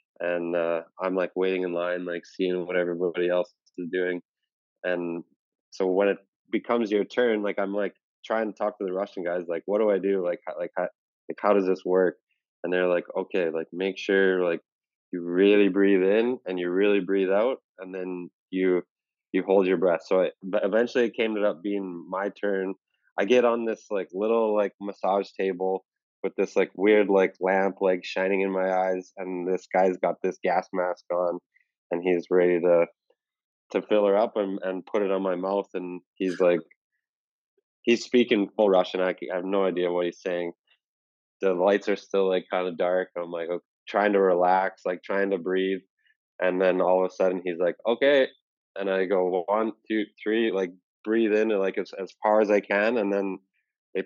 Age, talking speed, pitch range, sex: 20-39, 200 wpm, 90-100 Hz, male